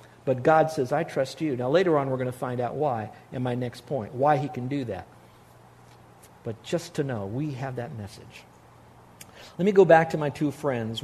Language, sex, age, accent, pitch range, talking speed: English, male, 50-69, American, 125-175 Hz, 215 wpm